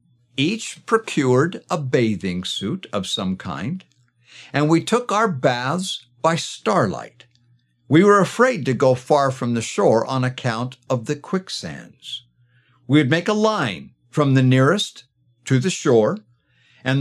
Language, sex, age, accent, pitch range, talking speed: English, male, 60-79, American, 120-165 Hz, 145 wpm